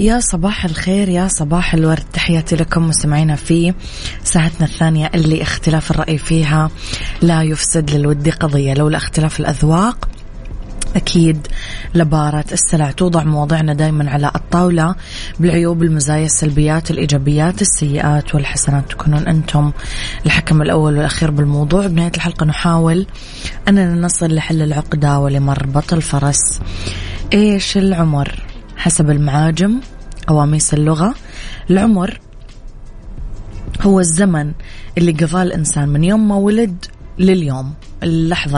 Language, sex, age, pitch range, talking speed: Arabic, female, 20-39, 150-175 Hz, 110 wpm